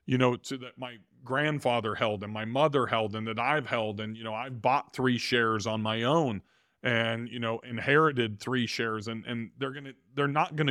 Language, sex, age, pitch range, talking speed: English, male, 40-59, 115-140 Hz, 225 wpm